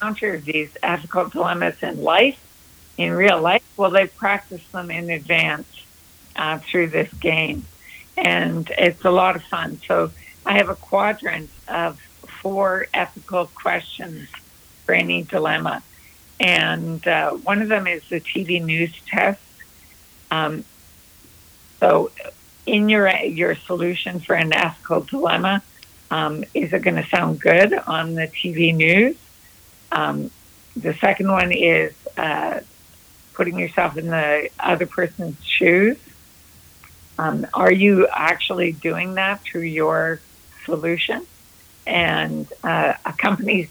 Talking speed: 130 wpm